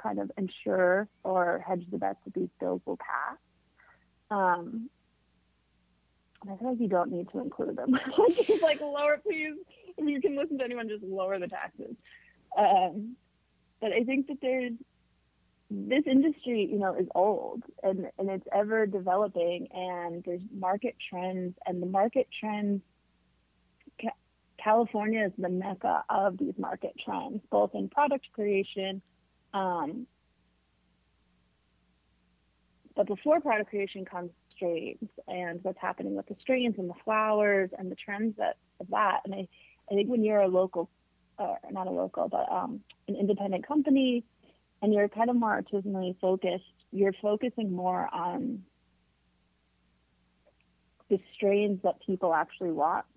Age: 30-49